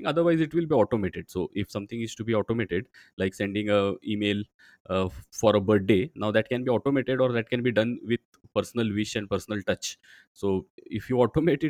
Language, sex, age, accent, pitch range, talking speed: English, male, 20-39, Indian, 100-130 Hz, 205 wpm